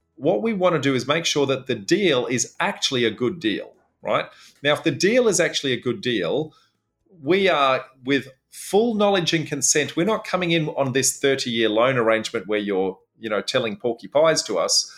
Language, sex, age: English, male, 30-49